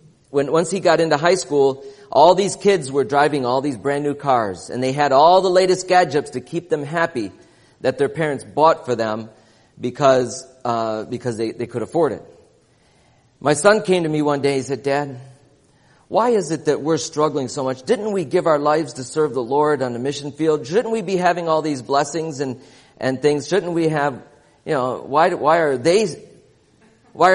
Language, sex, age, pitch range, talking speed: English, male, 40-59, 130-165 Hz, 205 wpm